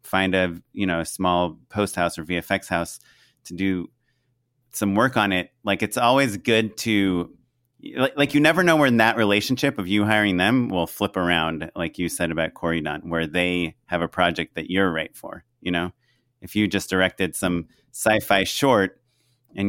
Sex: male